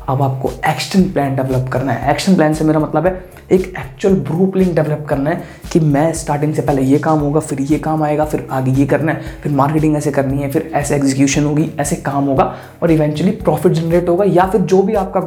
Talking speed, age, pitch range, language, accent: 230 wpm, 20-39, 145-170 Hz, Hindi, native